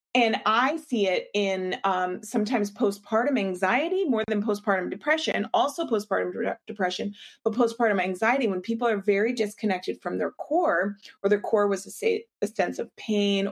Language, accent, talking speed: English, American, 160 wpm